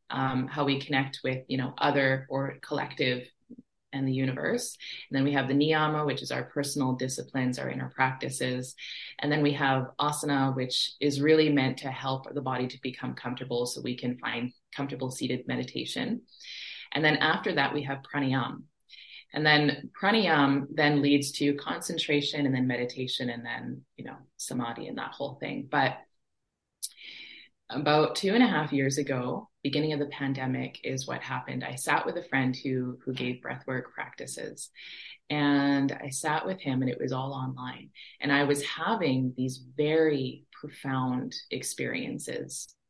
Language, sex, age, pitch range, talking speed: English, female, 20-39, 130-150 Hz, 165 wpm